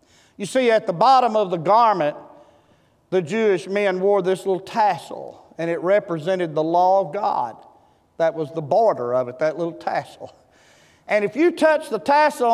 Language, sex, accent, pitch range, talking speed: English, male, American, 195-300 Hz, 175 wpm